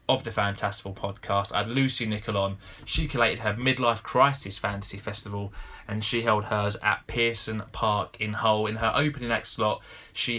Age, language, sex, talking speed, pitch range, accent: 20-39, English, male, 165 wpm, 105-120 Hz, British